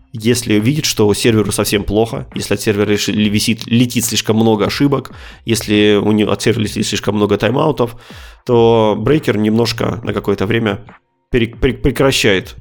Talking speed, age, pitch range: 145 wpm, 20-39, 105-120 Hz